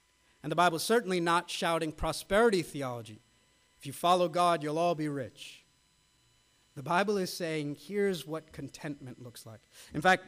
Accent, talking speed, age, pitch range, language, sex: American, 165 wpm, 50-69, 140-185 Hz, English, male